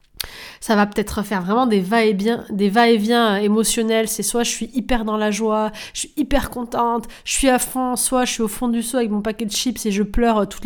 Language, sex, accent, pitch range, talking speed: French, female, French, 215-255 Hz, 235 wpm